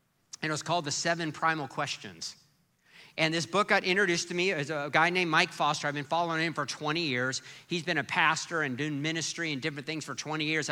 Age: 50-69